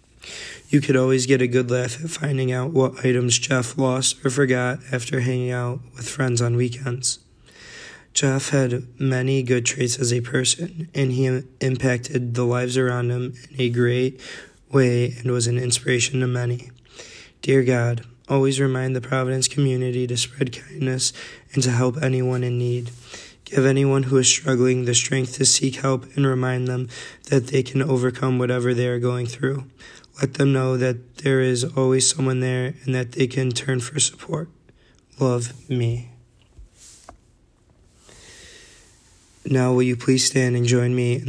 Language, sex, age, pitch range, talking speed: English, male, 20-39, 125-130 Hz, 165 wpm